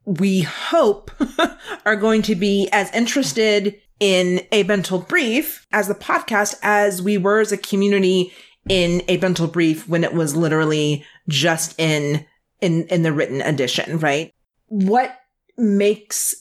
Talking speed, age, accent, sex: 145 wpm, 30-49, American, female